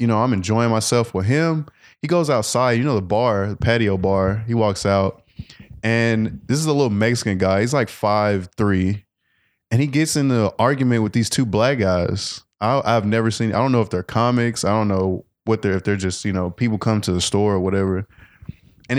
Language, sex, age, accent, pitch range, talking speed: English, male, 20-39, American, 100-120 Hz, 220 wpm